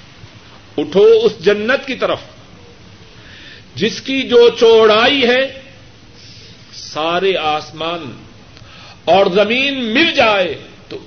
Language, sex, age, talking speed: Urdu, male, 50-69, 90 wpm